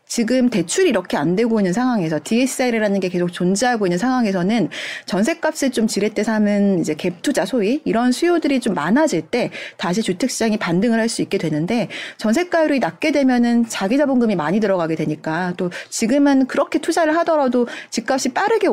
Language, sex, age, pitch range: Korean, female, 30-49, 190-275 Hz